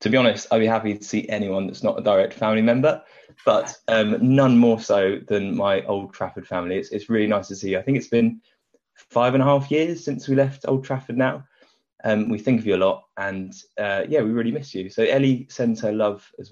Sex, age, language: male, 20-39, English